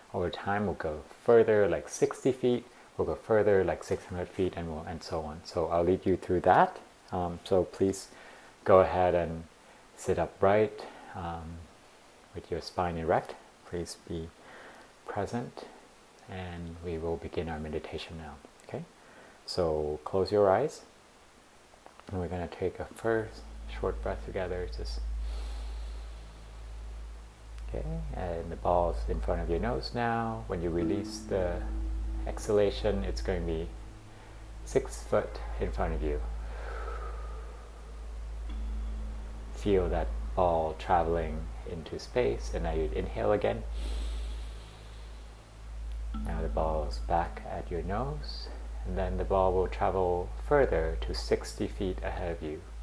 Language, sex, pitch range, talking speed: English, male, 65-95 Hz, 135 wpm